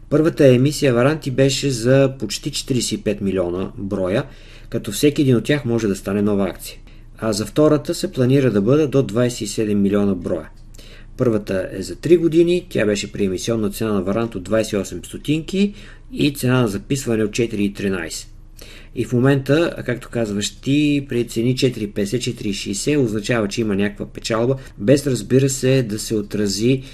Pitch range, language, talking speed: 105-130 Hz, Bulgarian, 155 wpm